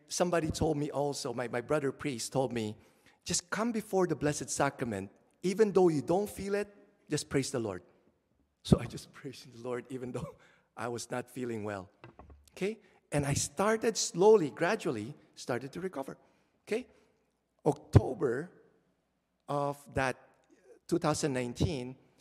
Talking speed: 145 wpm